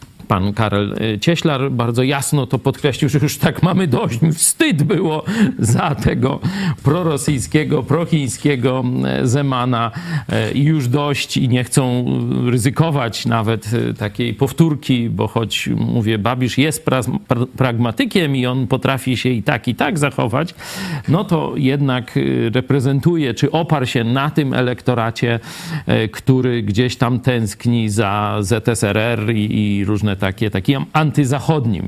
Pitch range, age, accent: 110-150 Hz, 50-69, native